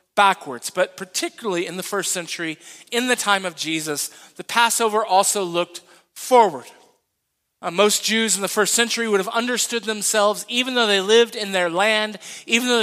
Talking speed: 175 wpm